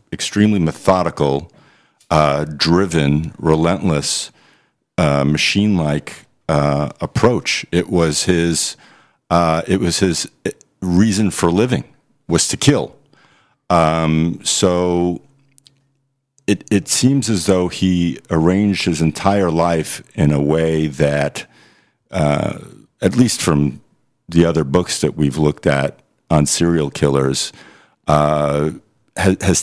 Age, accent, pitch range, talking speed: 50-69, American, 75-95 Hz, 110 wpm